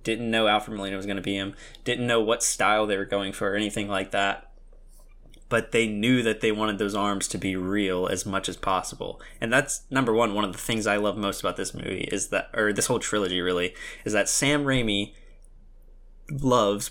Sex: male